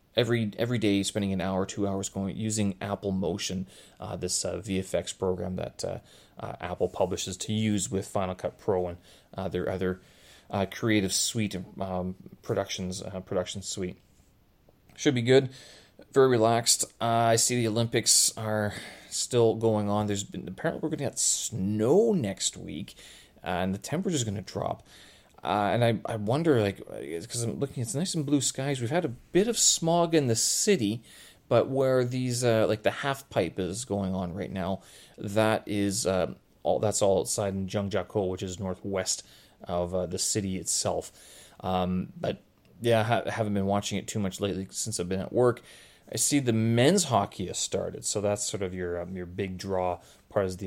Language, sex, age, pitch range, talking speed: English, male, 30-49, 95-115 Hz, 185 wpm